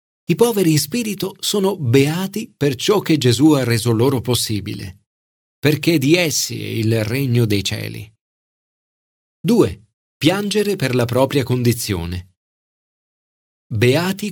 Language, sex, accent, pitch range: Italian, male, native, 110-160 Hz